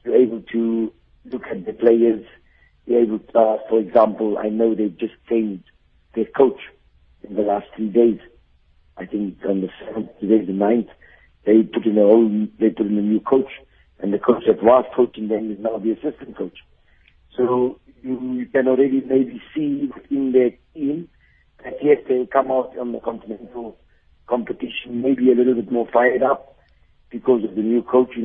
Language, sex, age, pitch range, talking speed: English, male, 60-79, 105-125 Hz, 185 wpm